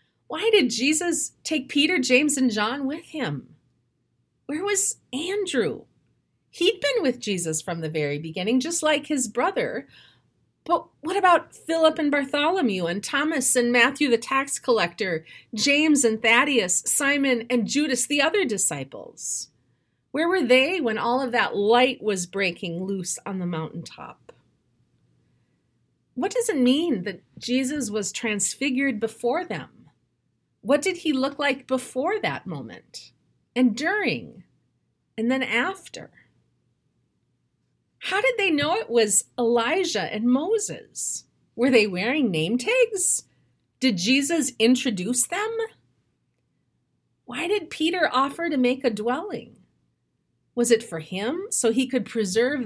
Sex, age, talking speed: female, 30-49, 135 wpm